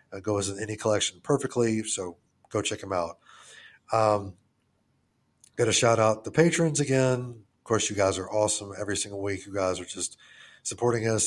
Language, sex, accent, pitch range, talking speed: English, male, American, 95-110 Hz, 180 wpm